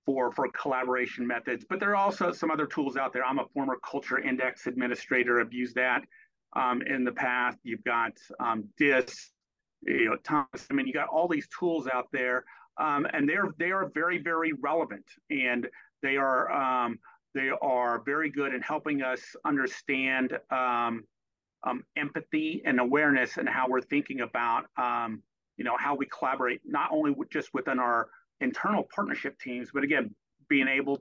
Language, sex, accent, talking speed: English, male, American, 175 wpm